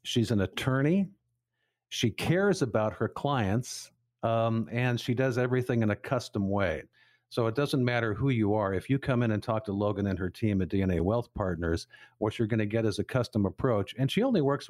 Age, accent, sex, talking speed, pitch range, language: 50-69, American, male, 210 wpm, 105-130 Hz, English